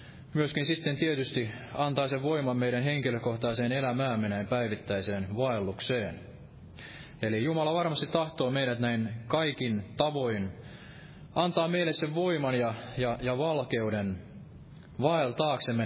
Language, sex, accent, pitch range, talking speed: Finnish, male, native, 110-145 Hz, 110 wpm